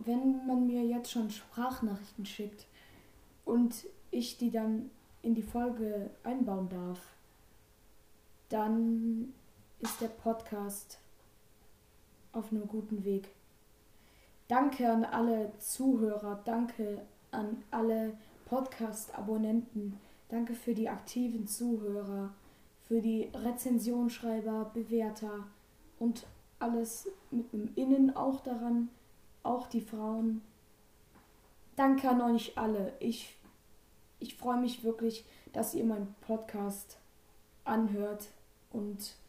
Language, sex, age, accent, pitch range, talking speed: German, female, 20-39, German, 195-235 Hz, 100 wpm